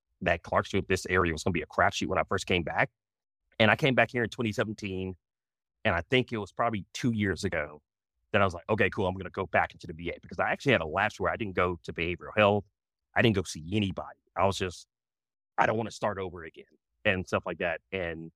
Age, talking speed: 30-49, 260 wpm